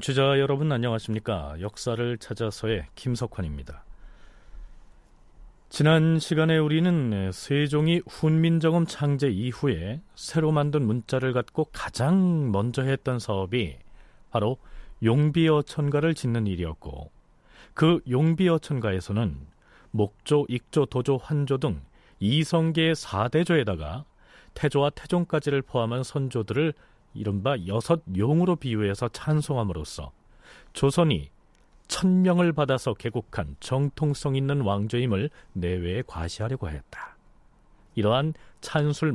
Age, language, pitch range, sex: 40-59, Korean, 105-155 Hz, male